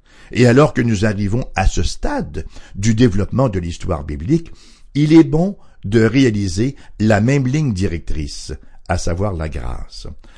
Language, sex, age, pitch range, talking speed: English, male, 60-79, 95-135 Hz, 150 wpm